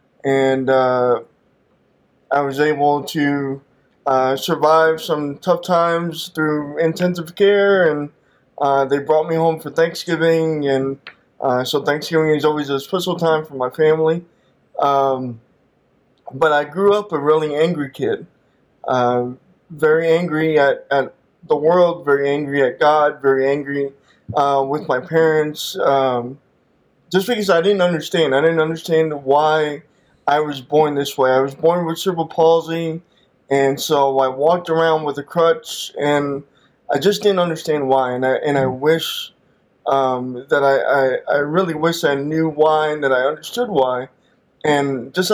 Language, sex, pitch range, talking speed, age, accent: English, male, 135-165 Hz, 155 wpm, 20-39, American